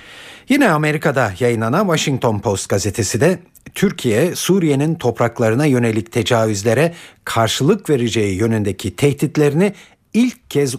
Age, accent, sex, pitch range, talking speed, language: 50-69, native, male, 115-165 Hz, 100 wpm, Turkish